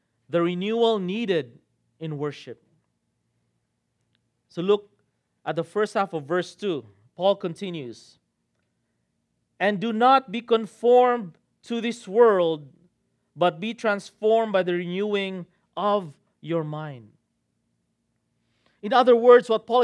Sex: male